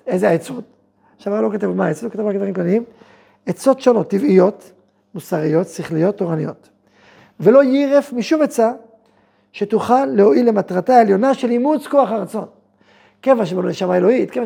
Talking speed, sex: 160 wpm, male